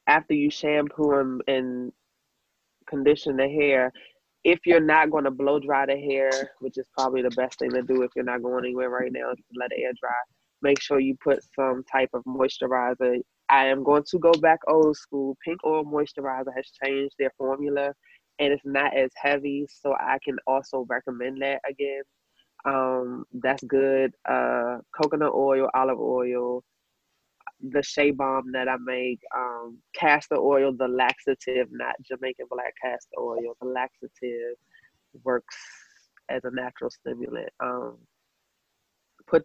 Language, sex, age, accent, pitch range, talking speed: English, female, 20-39, American, 125-140 Hz, 160 wpm